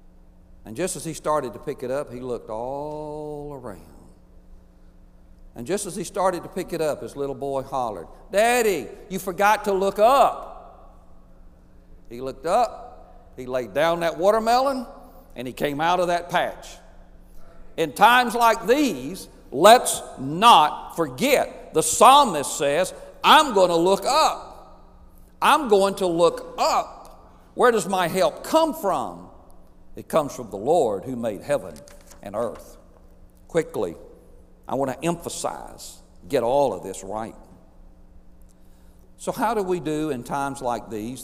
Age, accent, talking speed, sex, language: 60-79, American, 150 wpm, male, English